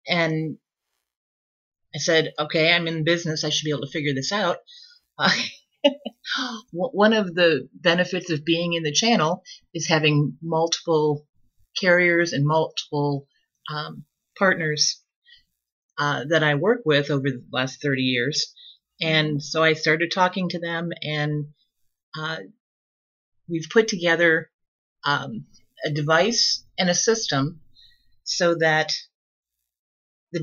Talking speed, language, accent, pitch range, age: 125 wpm, English, American, 150-175 Hz, 40-59